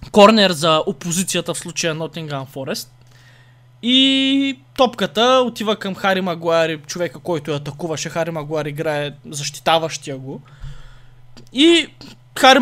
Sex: male